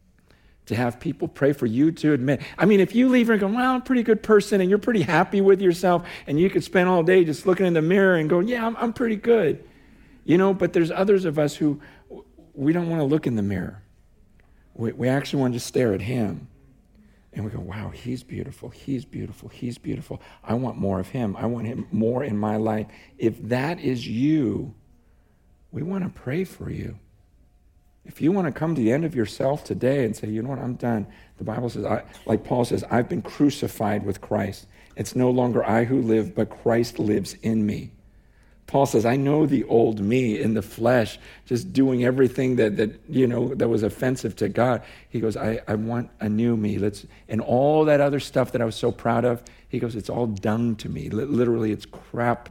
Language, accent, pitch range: English, American, 110-150 Hz